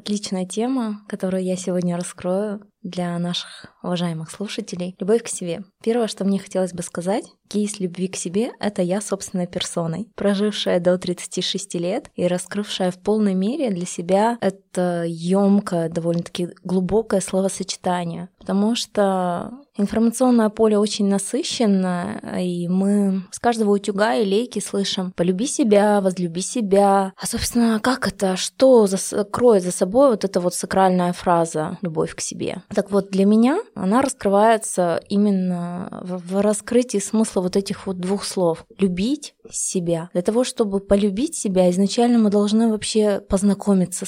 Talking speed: 145 wpm